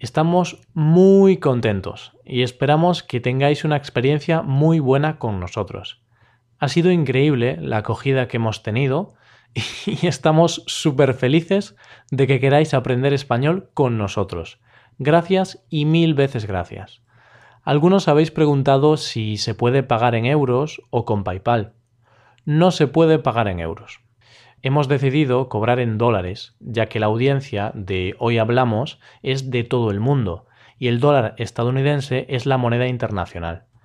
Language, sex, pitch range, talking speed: Spanish, male, 115-145 Hz, 140 wpm